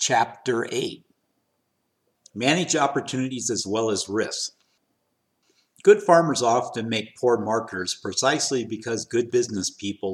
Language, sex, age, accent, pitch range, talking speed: English, male, 50-69, American, 105-130 Hz, 110 wpm